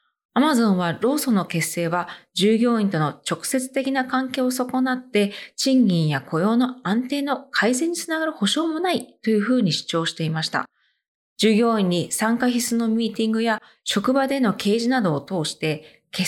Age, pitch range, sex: 20-39, 175-265 Hz, female